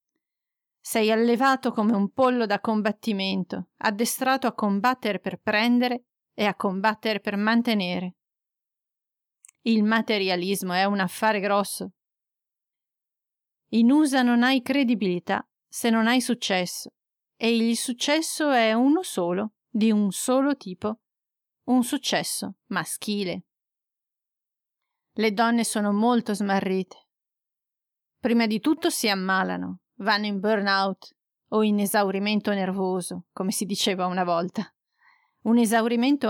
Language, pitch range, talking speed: Italian, 195-245 Hz, 115 wpm